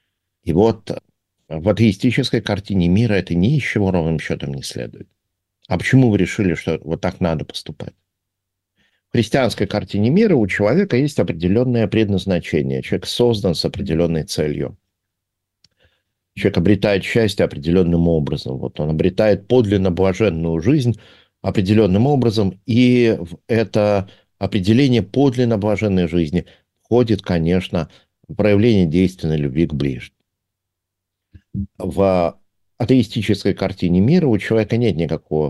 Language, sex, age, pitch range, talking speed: Russian, male, 50-69, 85-110 Hz, 120 wpm